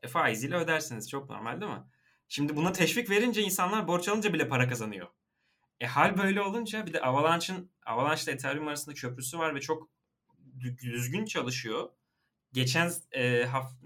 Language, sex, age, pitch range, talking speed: Turkish, male, 30-49, 125-175 Hz, 165 wpm